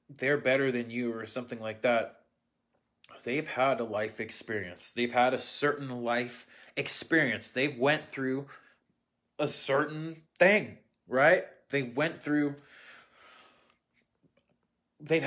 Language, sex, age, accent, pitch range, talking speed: English, male, 20-39, American, 120-155 Hz, 120 wpm